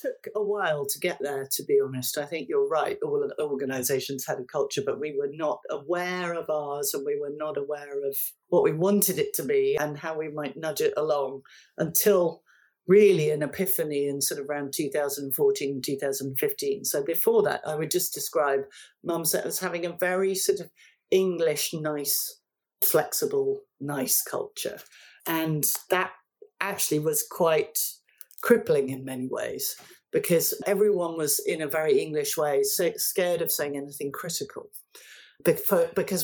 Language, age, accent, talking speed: English, 50-69, British, 160 wpm